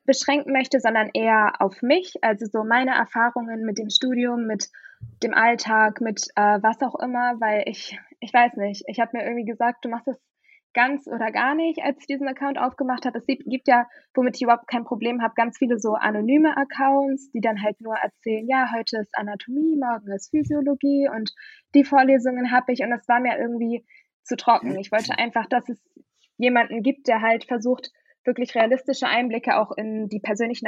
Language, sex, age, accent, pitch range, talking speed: German, female, 20-39, German, 220-265 Hz, 195 wpm